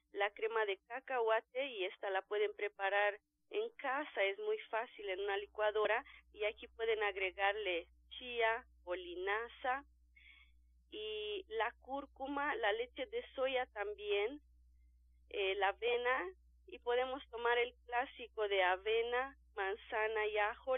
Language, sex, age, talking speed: Spanish, female, 40-59, 125 wpm